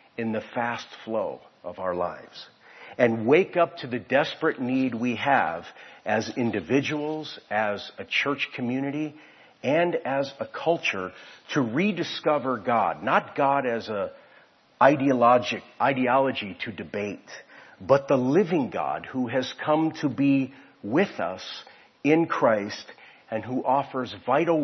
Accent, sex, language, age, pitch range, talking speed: American, male, English, 50-69, 115-150 Hz, 130 wpm